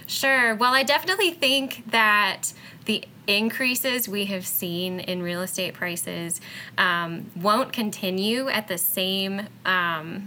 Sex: female